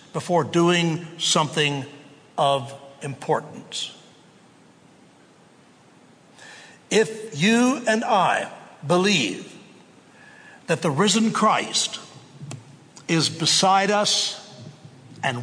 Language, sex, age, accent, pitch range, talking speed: English, male, 60-79, American, 150-195 Hz, 70 wpm